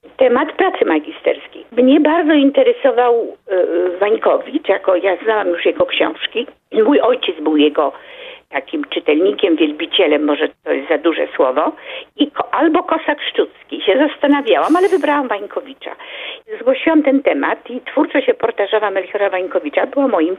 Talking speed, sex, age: 140 wpm, female, 50-69